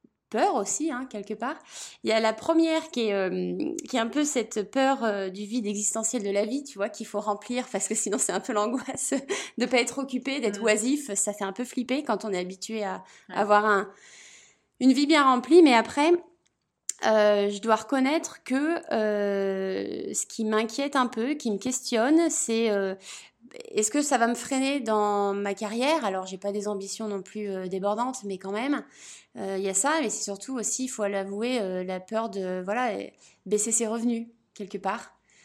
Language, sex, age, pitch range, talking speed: French, female, 20-39, 195-245 Hz, 205 wpm